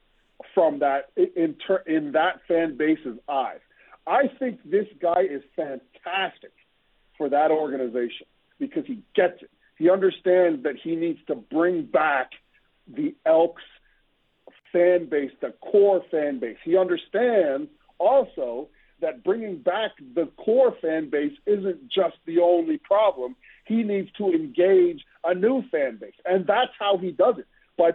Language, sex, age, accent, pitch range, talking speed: English, male, 50-69, American, 175-280 Hz, 145 wpm